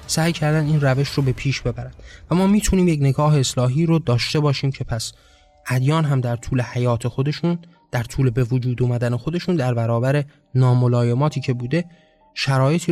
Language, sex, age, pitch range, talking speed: Persian, male, 20-39, 125-160 Hz, 170 wpm